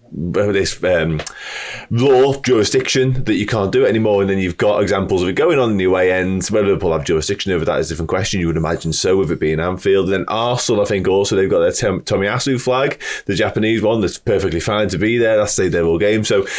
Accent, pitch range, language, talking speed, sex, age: British, 95-125 Hz, English, 245 wpm, male, 30-49